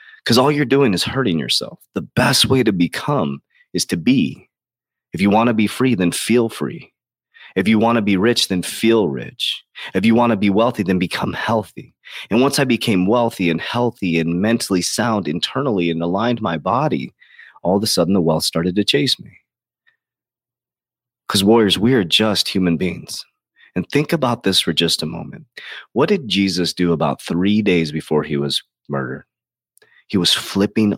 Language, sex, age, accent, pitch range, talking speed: English, male, 30-49, American, 85-115 Hz, 185 wpm